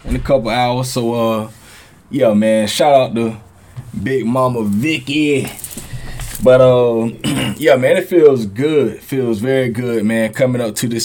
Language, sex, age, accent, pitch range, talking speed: English, male, 20-39, American, 110-135 Hz, 165 wpm